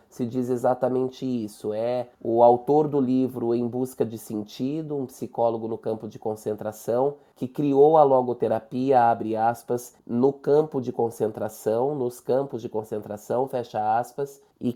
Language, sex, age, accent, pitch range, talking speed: Portuguese, male, 20-39, Brazilian, 110-130 Hz, 145 wpm